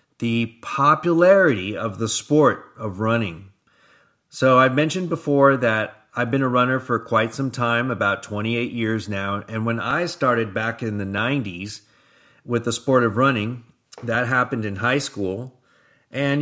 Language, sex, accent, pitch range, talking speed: English, male, American, 110-135 Hz, 155 wpm